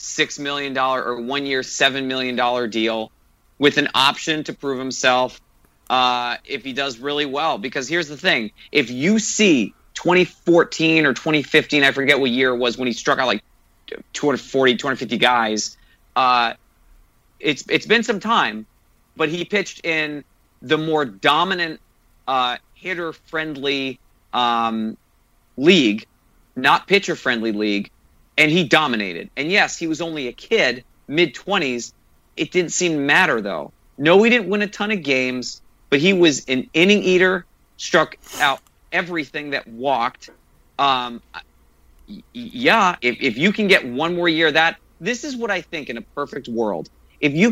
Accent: American